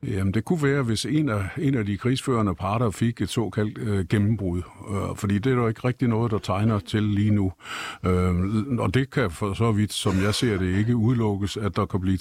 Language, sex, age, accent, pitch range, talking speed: Danish, male, 50-69, native, 95-115 Hz, 230 wpm